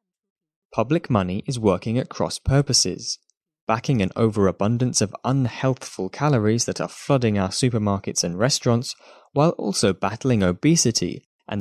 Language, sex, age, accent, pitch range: Chinese, male, 10-29, British, 100-140 Hz